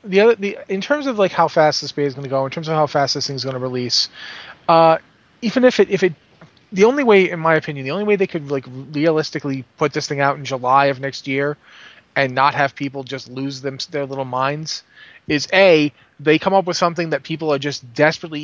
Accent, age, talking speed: American, 30-49, 245 wpm